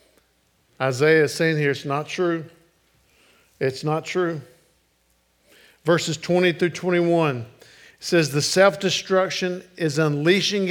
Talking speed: 105 wpm